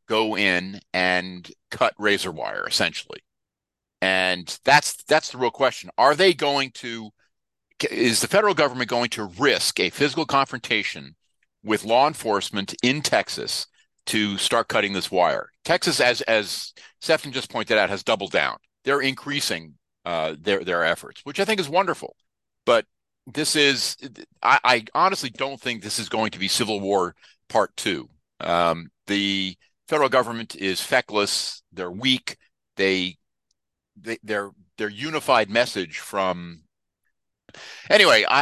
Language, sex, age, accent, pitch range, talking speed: English, male, 50-69, American, 95-140 Hz, 140 wpm